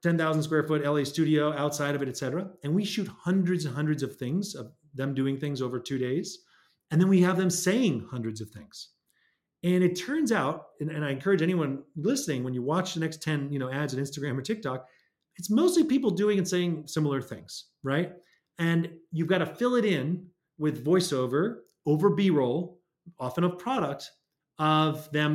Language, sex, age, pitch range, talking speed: English, male, 30-49, 135-180 Hz, 190 wpm